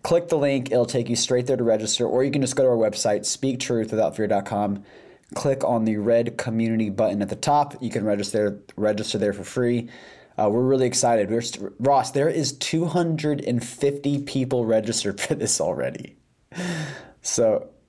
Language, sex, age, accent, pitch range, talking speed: English, male, 20-39, American, 115-145 Hz, 170 wpm